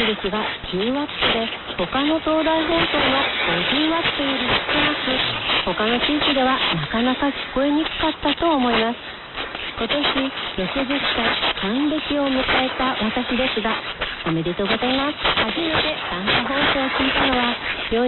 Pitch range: 225-295 Hz